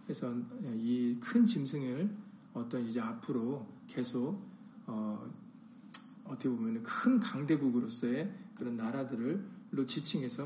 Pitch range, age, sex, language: 135-225 Hz, 40-59, male, Korean